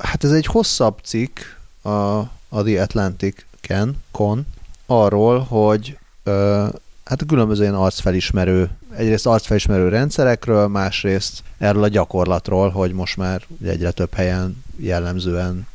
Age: 30-49